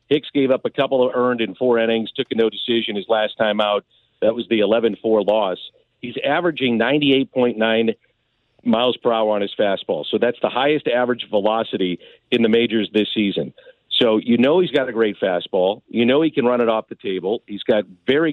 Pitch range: 110-135 Hz